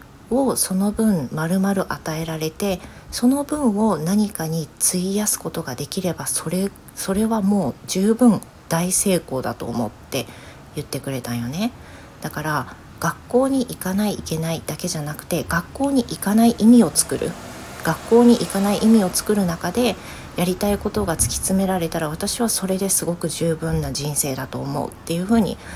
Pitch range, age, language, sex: 150-205 Hz, 40-59, Japanese, female